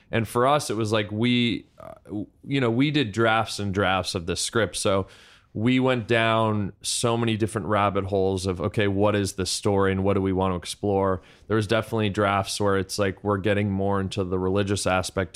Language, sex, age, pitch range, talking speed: English, male, 20-39, 95-105 Hz, 205 wpm